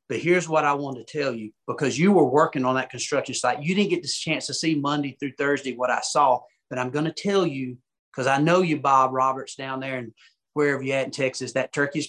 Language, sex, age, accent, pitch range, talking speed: English, male, 40-59, American, 140-205 Hz, 255 wpm